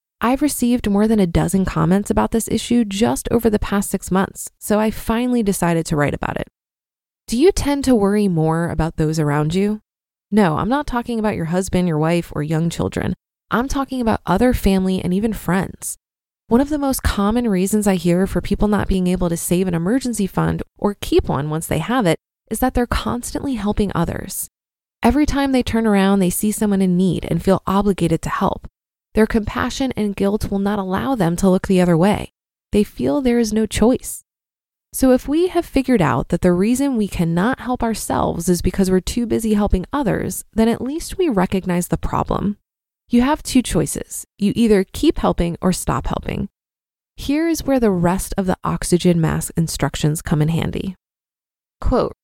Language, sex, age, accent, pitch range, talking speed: English, female, 20-39, American, 175-235 Hz, 195 wpm